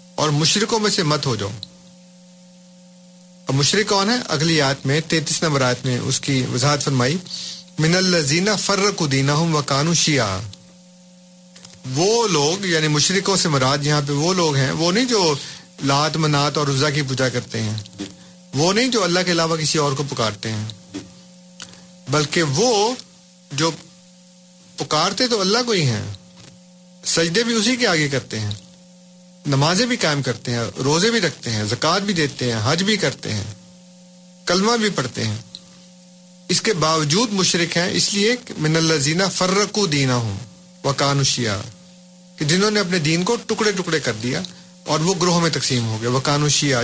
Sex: male